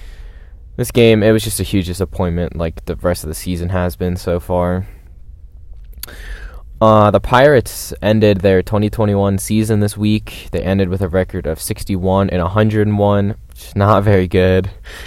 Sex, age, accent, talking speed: male, 10-29, American, 185 wpm